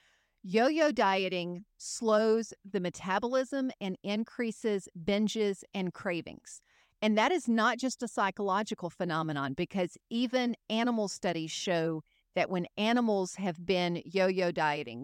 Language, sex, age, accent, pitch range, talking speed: English, female, 50-69, American, 185-245 Hz, 120 wpm